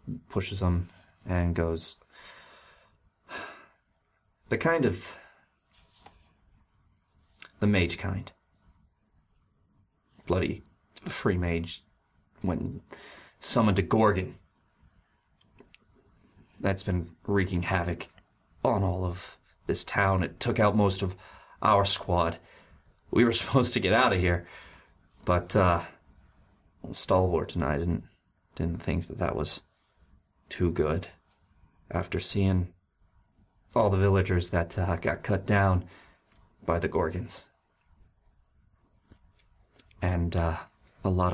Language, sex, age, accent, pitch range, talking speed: English, male, 30-49, American, 85-100 Hz, 105 wpm